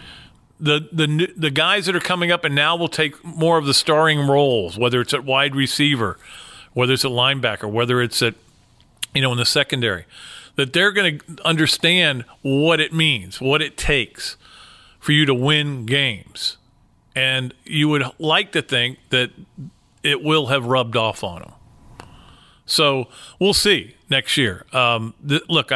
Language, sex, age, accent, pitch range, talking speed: English, male, 40-59, American, 130-160 Hz, 170 wpm